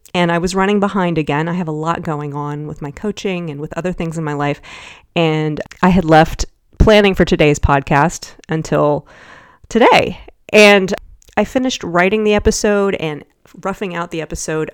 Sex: female